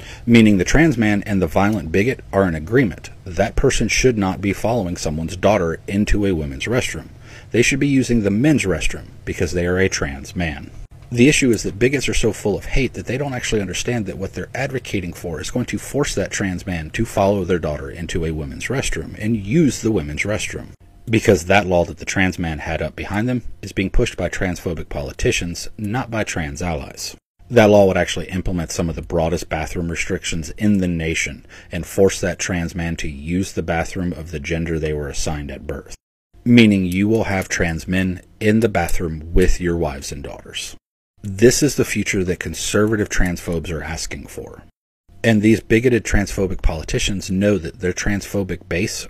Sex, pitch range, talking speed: male, 85-110 Hz, 200 wpm